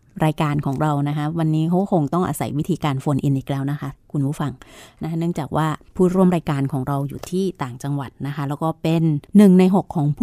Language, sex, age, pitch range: Thai, female, 30-49, 145-180 Hz